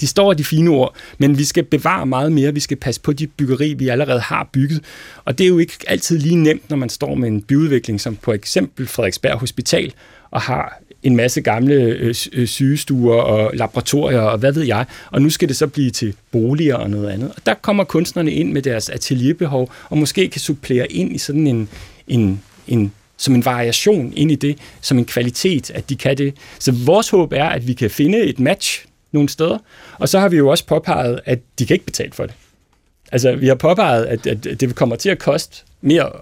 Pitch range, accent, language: 115-150 Hz, native, Danish